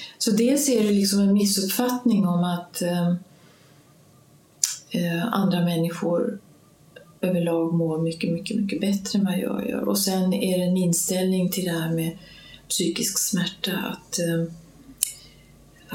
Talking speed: 140 wpm